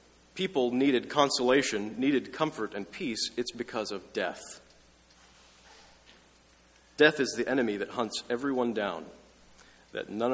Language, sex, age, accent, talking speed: English, male, 40-59, American, 120 wpm